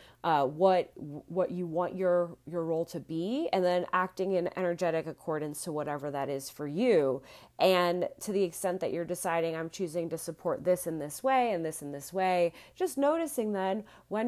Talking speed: 195 wpm